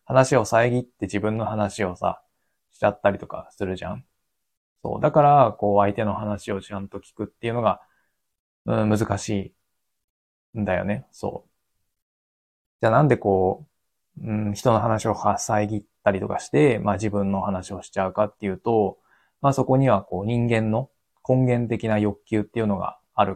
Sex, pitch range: male, 100-120 Hz